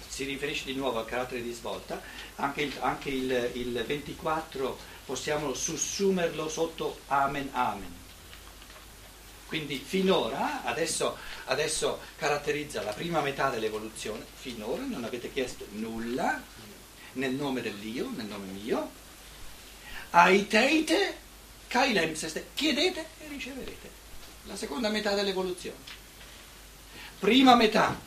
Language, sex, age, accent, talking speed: Italian, male, 60-79, native, 100 wpm